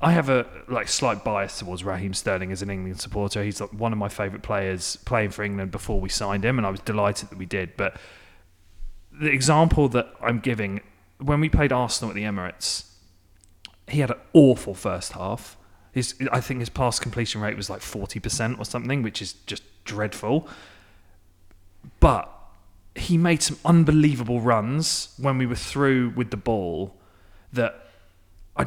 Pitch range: 100-130 Hz